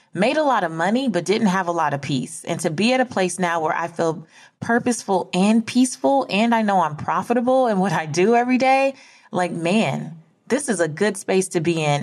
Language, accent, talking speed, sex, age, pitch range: English, American, 230 wpm, female, 20-39, 165-250 Hz